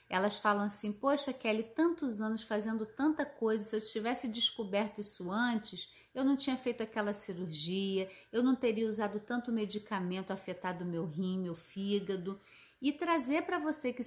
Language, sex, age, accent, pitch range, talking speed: Portuguese, female, 30-49, Brazilian, 195-255 Hz, 165 wpm